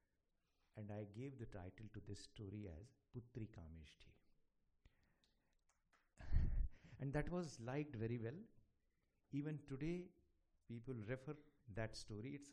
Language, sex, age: English, male, 60-79